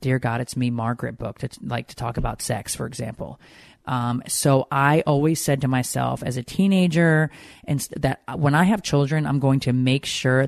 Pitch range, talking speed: 125-150 Hz, 205 wpm